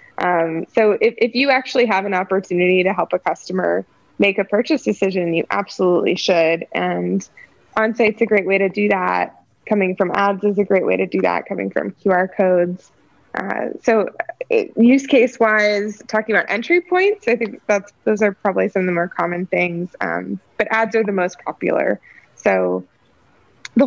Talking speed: 185 wpm